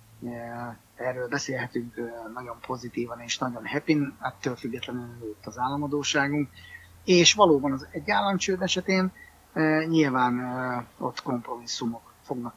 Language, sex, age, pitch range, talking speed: Hungarian, male, 30-49, 120-150 Hz, 105 wpm